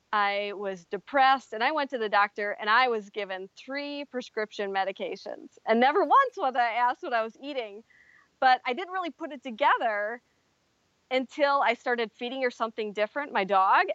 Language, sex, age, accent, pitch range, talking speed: English, female, 30-49, American, 210-255 Hz, 180 wpm